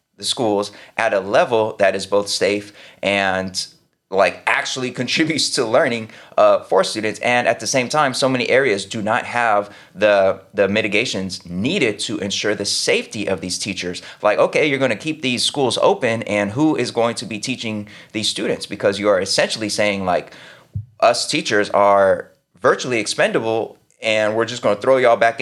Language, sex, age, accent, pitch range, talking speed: English, male, 20-39, American, 95-115 Hz, 175 wpm